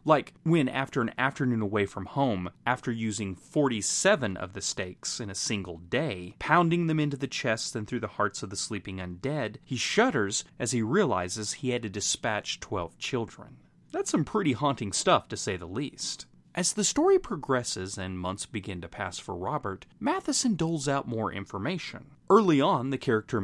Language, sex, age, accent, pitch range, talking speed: English, male, 30-49, American, 100-145 Hz, 180 wpm